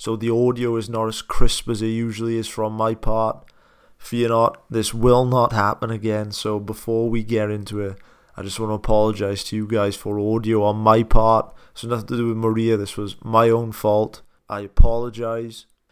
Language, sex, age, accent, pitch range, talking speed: English, male, 20-39, British, 110-125 Hz, 200 wpm